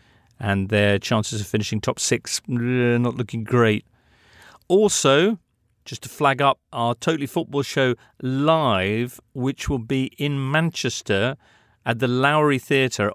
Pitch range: 110-150 Hz